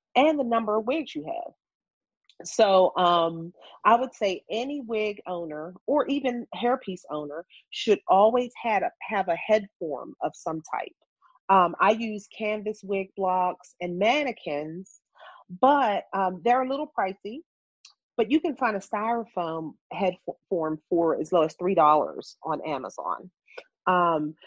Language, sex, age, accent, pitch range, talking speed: English, female, 40-59, American, 175-230 Hz, 140 wpm